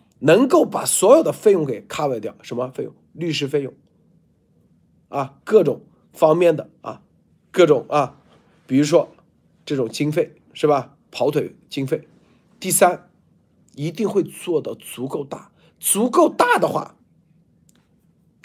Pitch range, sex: 155-225 Hz, male